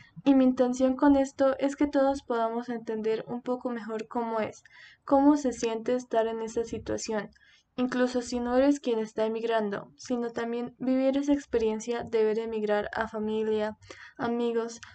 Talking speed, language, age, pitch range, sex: 160 wpm, Spanish, 10-29, 220-260 Hz, female